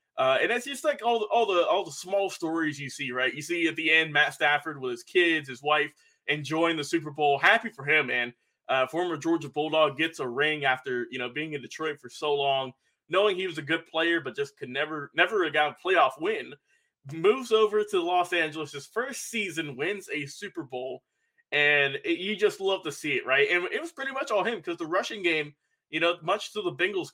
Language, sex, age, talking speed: English, male, 20-39, 230 wpm